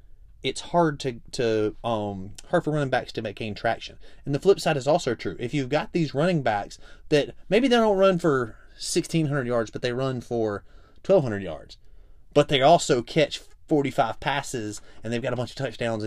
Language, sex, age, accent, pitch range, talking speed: English, male, 30-49, American, 105-165 Hz, 195 wpm